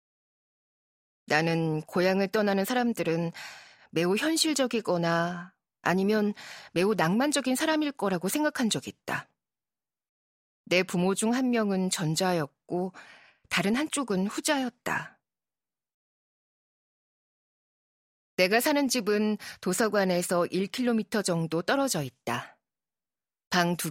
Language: Korean